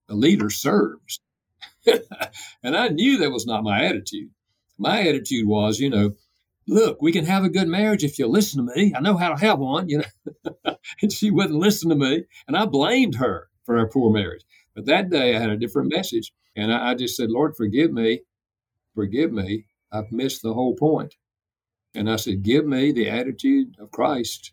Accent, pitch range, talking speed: American, 105-150 Hz, 200 wpm